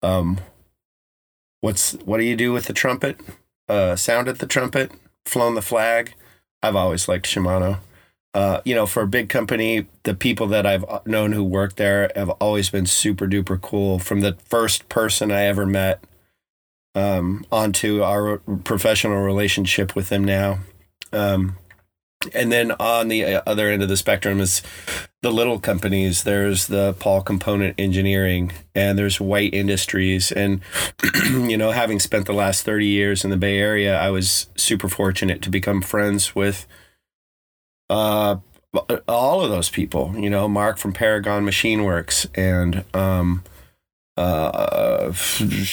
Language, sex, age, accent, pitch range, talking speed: English, male, 30-49, American, 95-105 Hz, 150 wpm